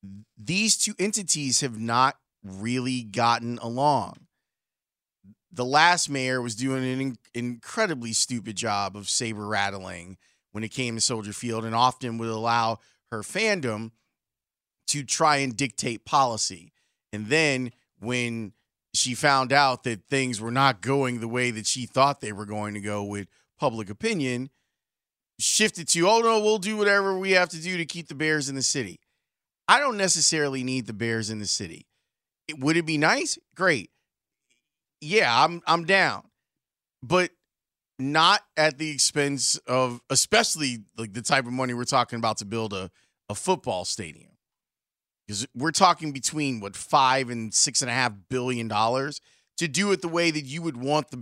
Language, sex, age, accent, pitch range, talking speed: English, male, 30-49, American, 115-155 Hz, 165 wpm